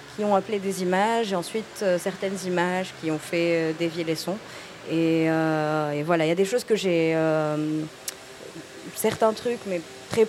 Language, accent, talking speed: French, French, 190 wpm